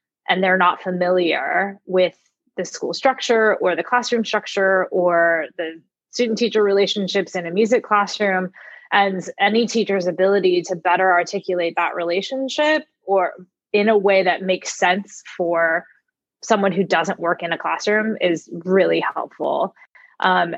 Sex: female